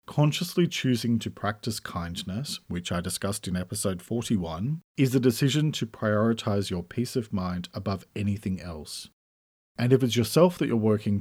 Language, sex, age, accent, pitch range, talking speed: English, male, 40-59, Australian, 95-130 Hz, 160 wpm